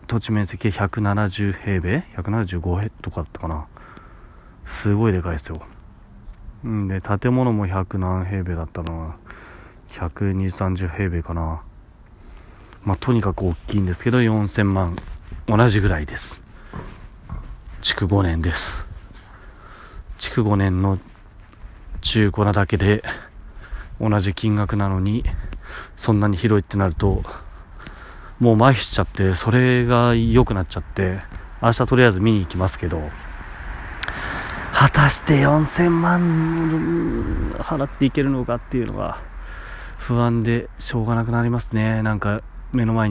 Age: 30-49